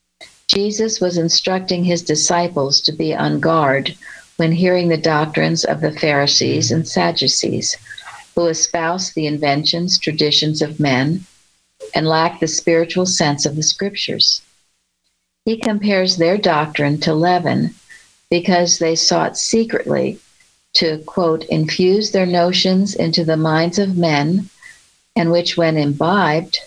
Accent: American